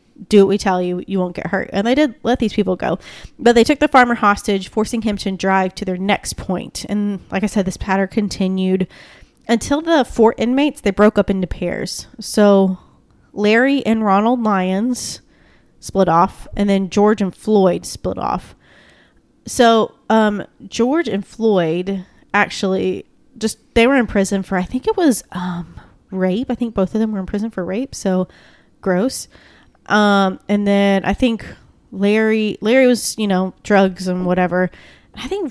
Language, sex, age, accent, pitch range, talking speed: English, female, 20-39, American, 190-235 Hz, 175 wpm